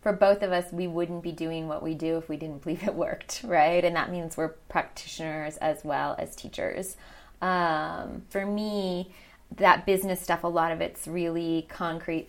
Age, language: 20-39, English